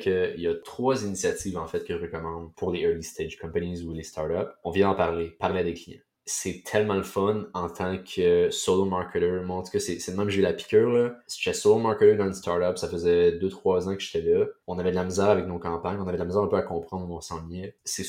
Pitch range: 85-100 Hz